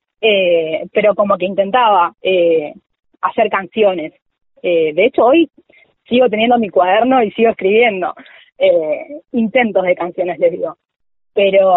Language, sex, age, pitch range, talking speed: Spanish, female, 20-39, 190-245 Hz, 125 wpm